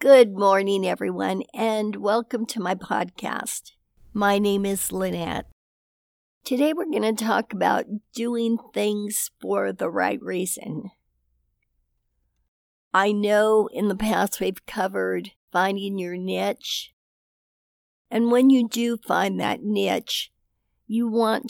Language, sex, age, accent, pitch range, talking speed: English, female, 60-79, American, 180-220 Hz, 120 wpm